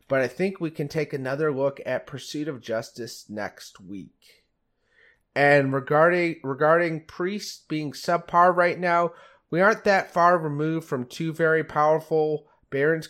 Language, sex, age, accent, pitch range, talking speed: English, male, 30-49, American, 125-155 Hz, 145 wpm